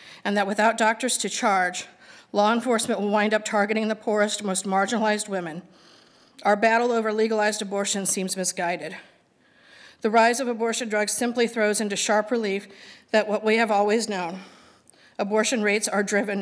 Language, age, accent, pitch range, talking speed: English, 50-69, American, 195-220 Hz, 160 wpm